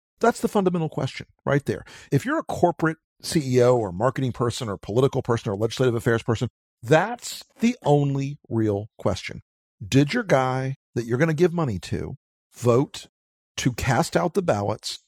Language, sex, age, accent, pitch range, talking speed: English, male, 50-69, American, 110-160 Hz, 165 wpm